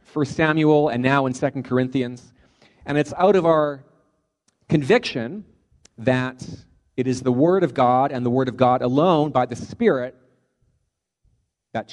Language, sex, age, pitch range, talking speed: English, male, 40-59, 115-145 Hz, 150 wpm